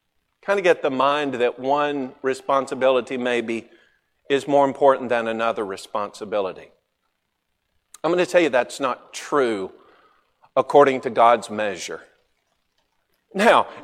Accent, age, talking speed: American, 50-69, 120 wpm